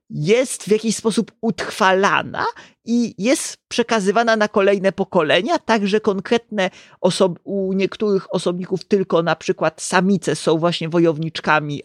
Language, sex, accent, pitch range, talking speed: Polish, male, native, 170-220 Hz, 115 wpm